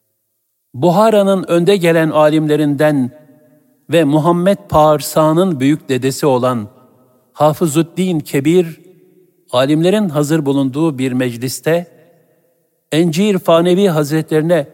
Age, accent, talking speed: 60-79, native, 80 wpm